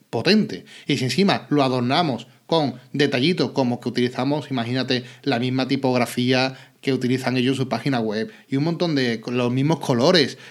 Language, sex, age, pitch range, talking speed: Spanish, male, 30-49, 125-160 Hz, 165 wpm